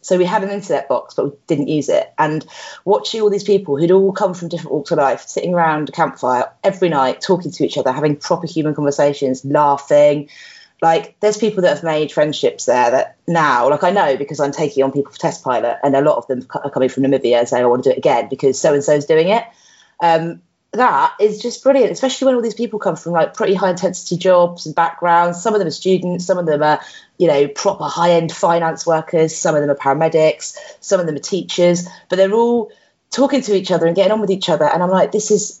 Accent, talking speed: British, 245 wpm